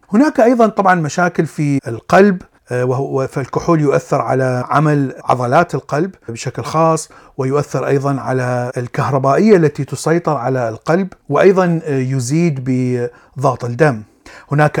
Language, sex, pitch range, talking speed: Arabic, male, 130-165 Hz, 110 wpm